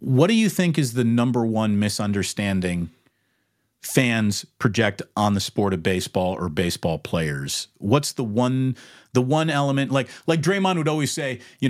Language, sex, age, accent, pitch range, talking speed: English, male, 40-59, American, 110-160 Hz, 165 wpm